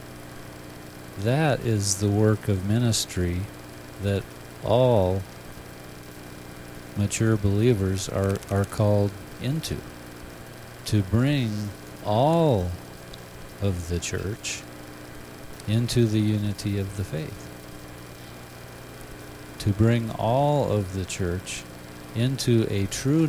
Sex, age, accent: male, 50-69, American